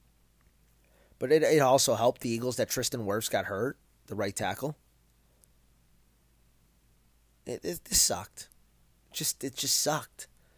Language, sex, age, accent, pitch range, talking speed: English, male, 20-39, American, 95-135 Hz, 130 wpm